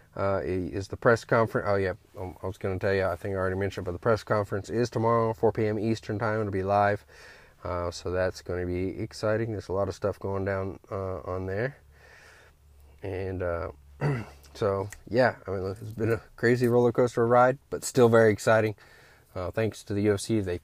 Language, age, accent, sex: English, 20-39, American, male